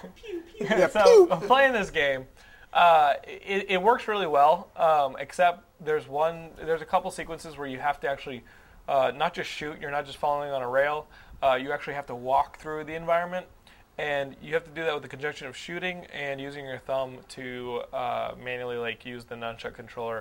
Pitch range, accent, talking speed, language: 110-145 Hz, American, 200 wpm, English